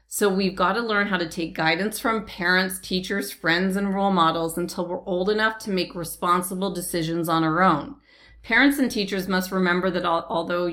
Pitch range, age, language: 175-210 Hz, 40-59, English